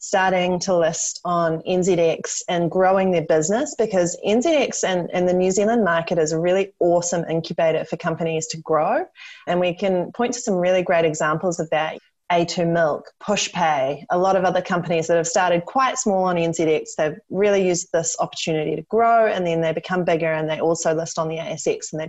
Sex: female